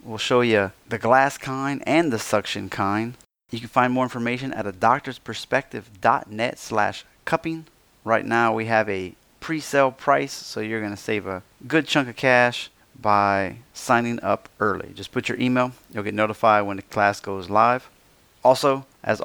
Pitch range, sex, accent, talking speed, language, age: 105-125 Hz, male, American, 170 wpm, English, 30-49